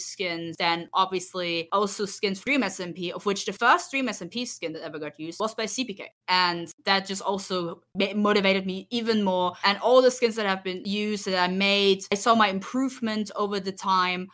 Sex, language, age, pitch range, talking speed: female, English, 20-39, 170-205 Hz, 195 wpm